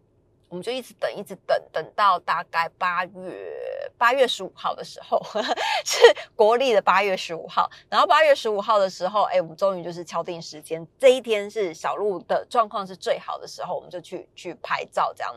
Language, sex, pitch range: Chinese, female, 175-225 Hz